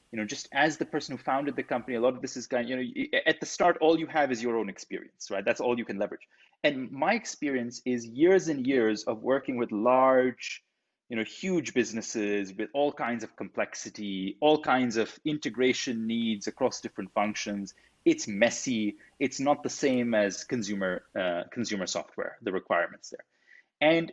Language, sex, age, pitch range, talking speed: English, male, 30-49, 115-160 Hz, 195 wpm